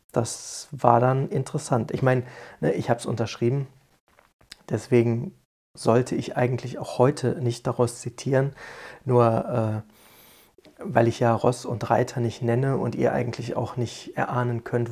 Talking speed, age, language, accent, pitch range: 145 wpm, 30-49, German, German, 120-130 Hz